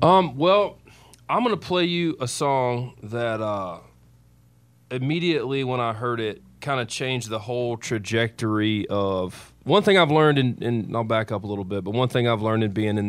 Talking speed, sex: 200 wpm, male